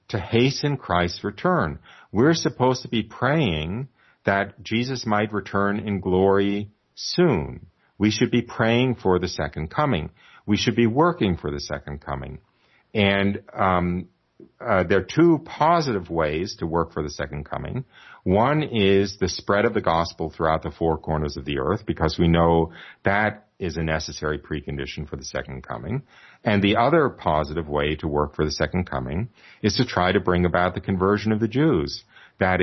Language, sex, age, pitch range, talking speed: English, male, 50-69, 80-110 Hz, 175 wpm